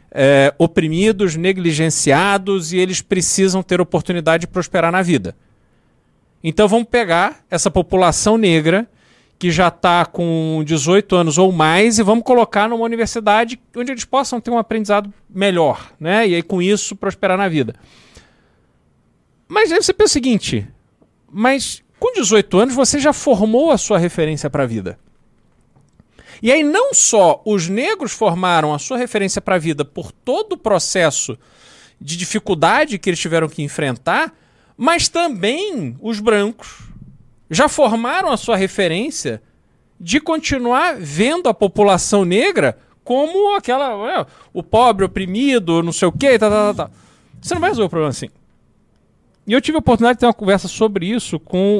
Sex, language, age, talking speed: male, Portuguese, 40-59, 160 wpm